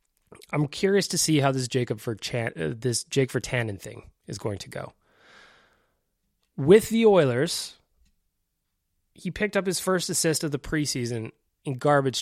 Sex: male